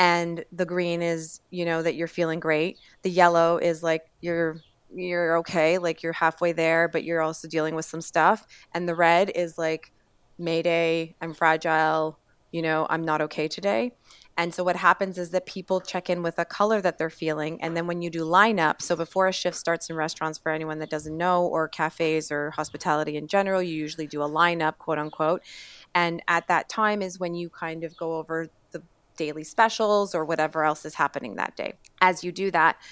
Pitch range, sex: 160-180 Hz, female